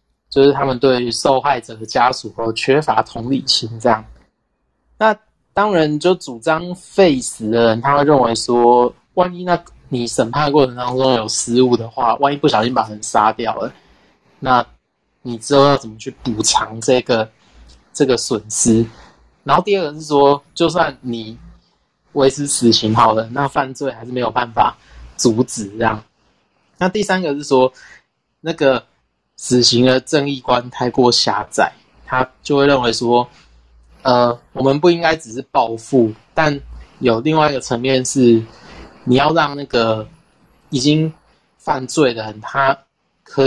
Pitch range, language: 115-145 Hz, Chinese